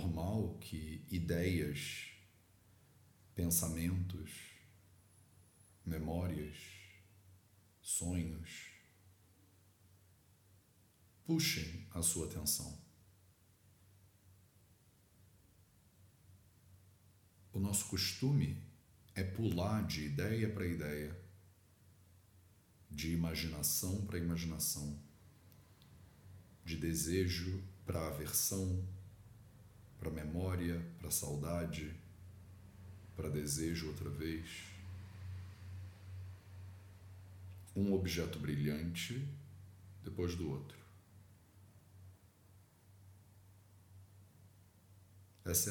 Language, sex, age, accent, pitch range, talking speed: English, male, 40-59, Brazilian, 85-100 Hz, 55 wpm